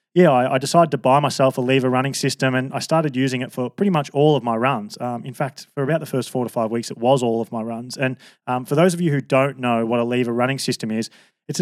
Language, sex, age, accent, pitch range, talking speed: English, male, 20-39, Australian, 120-150 Hz, 290 wpm